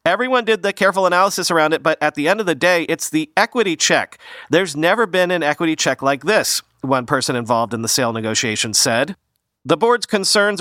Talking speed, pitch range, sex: 210 wpm, 130-175 Hz, male